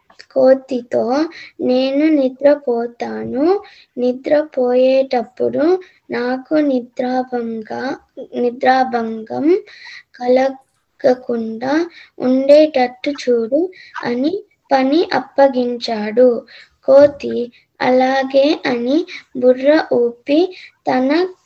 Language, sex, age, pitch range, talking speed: Telugu, female, 20-39, 250-305 Hz, 55 wpm